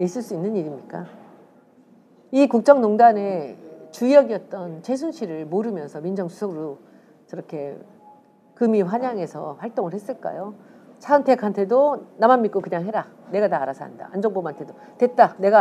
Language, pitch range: Korean, 180-250 Hz